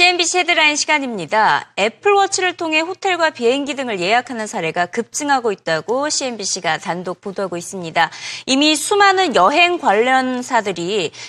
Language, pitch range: Korean, 205-315 Hz